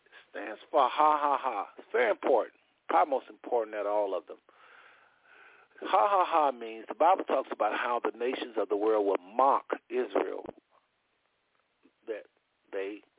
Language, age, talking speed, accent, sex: English, 50-69, 160 wpm, American, male